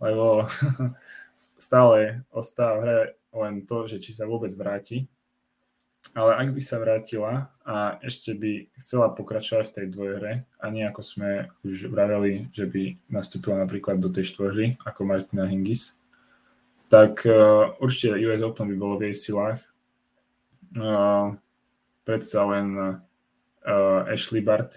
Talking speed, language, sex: 135 wpm, Czech, male